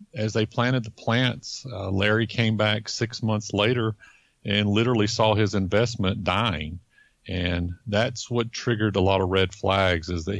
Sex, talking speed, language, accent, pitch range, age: male, 165 wpm, English, American, 95-115 Hz, 50-69